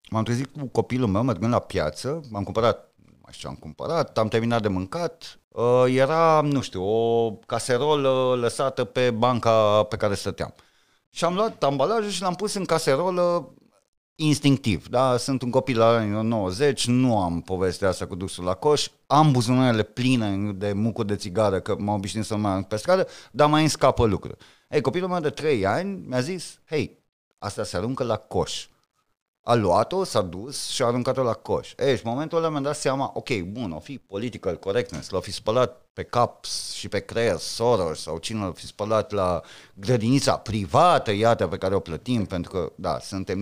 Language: Romanian